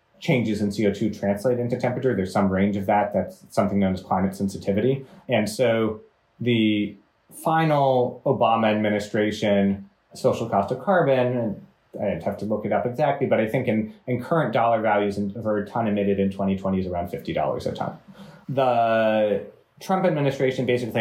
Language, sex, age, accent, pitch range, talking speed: English, male, 30-49, American, 100-125 Hz, 170 wpm